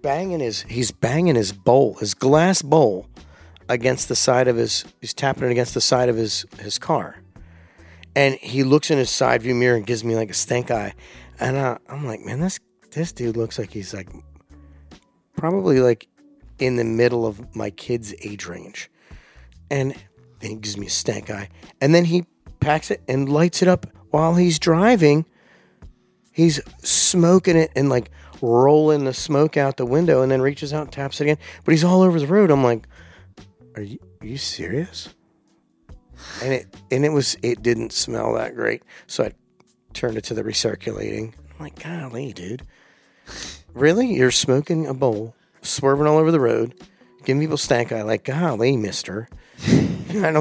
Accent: American